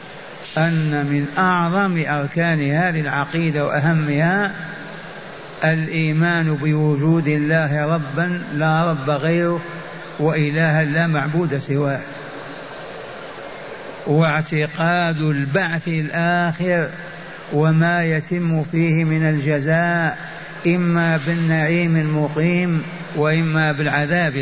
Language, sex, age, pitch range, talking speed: Arabic, male, 50-69, 155-175 Hz, 75 wpm